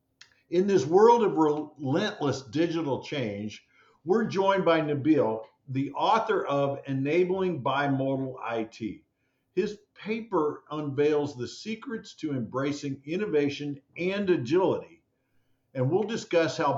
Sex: male